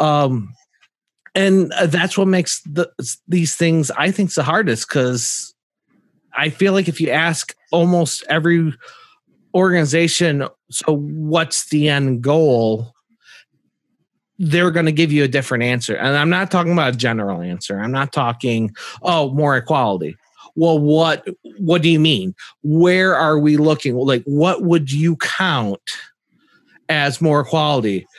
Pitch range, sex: 130-170 Hz, male